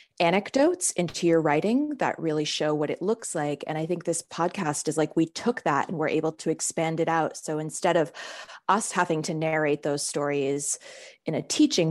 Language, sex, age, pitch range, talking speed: English, female, 20-39, 150-175 Hz, 200 wpm